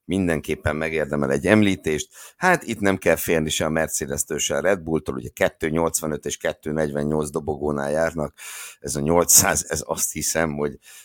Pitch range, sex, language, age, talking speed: 75-105 Hz, male, Hungarian, 60-79, 155 wpm